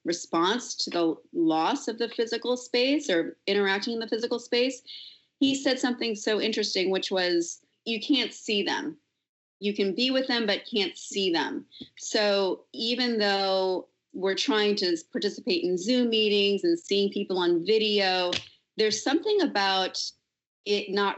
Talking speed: 155 wpm